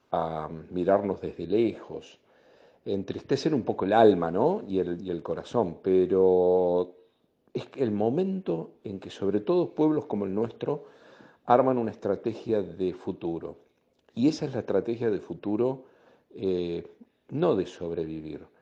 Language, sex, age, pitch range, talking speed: Spanish, male, 50-69, 95-110 Hz, 130 wpm